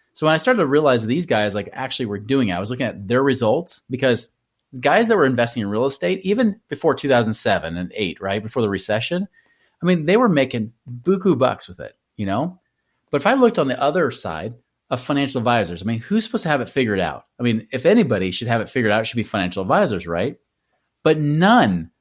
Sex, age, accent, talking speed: male, 30-49, American, 230 wpm